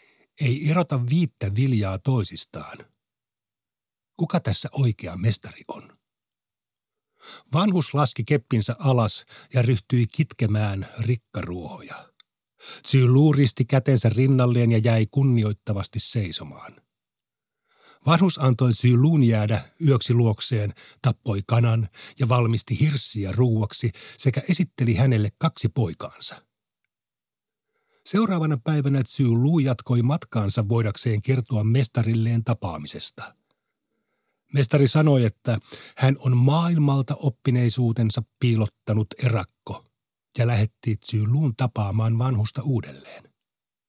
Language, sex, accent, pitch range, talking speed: Finnish, male, native, 110-135 Hz, 90 wpm